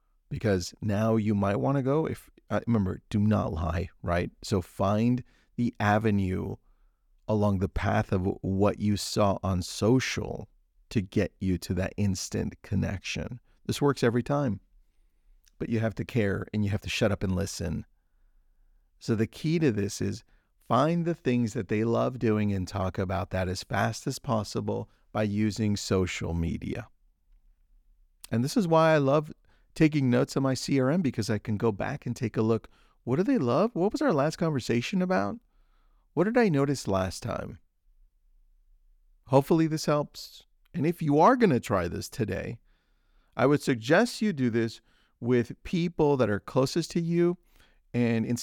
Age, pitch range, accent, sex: 40-59, 95-130 Hz, American, male